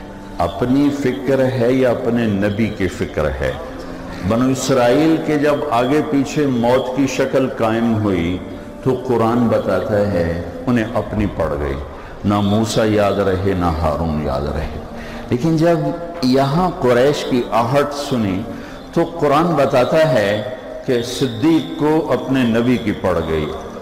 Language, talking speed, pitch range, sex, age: Urdu, 140 wpm, 90-125 Hz, male, 60-79